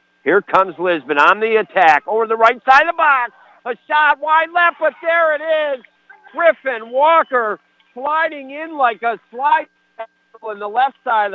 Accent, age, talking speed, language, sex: American, 50-69, 175 wpm, English, male